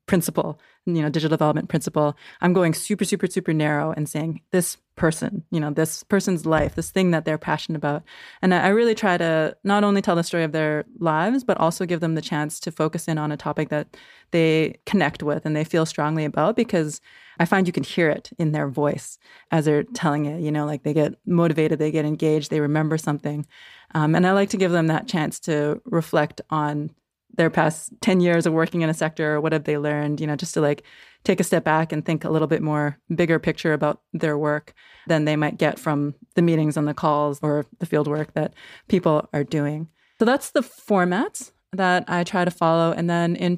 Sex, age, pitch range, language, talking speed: female, 20-39, 155-185 Hz, English, 225 wpm